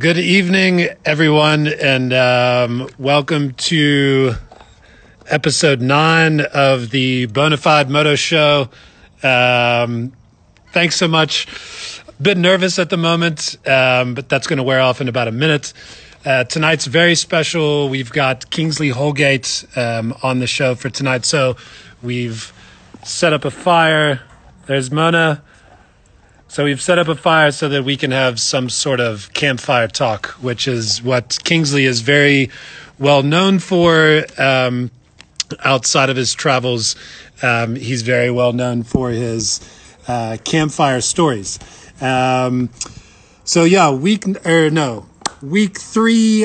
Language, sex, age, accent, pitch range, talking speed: English, male, 30-49, American, 125-160 Hz, 140 wpm